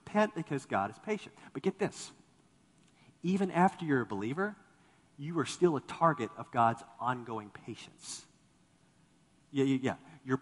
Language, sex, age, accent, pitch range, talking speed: English, male, 40-59, American, 130-175 Hz, 140 wpm